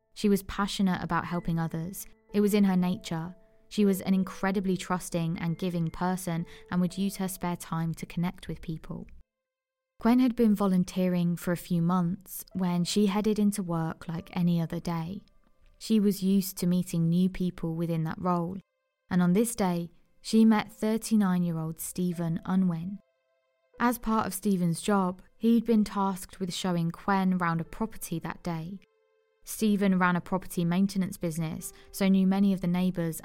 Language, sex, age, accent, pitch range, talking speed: English, female, 20-39, British, 175-205 Hz, 170 wpm